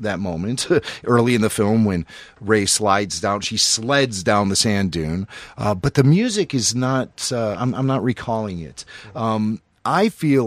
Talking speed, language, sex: 180 wpm, English, male